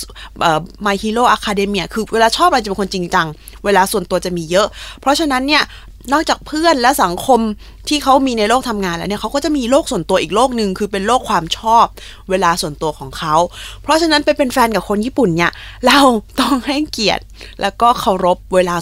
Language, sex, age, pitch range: Thai, female, 20-39, 175-255 Hz